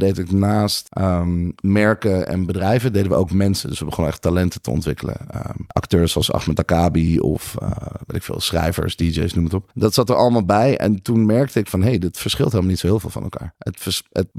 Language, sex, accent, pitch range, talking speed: Dutch, male, Dutch, 90-110 Hz, 235 wpm